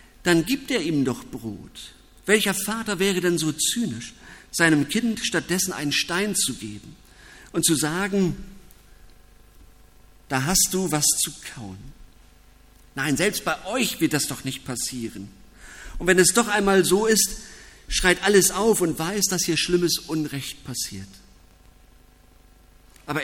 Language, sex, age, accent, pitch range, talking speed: German, male, 50-69, German, 125-180 Hz, 140 wpm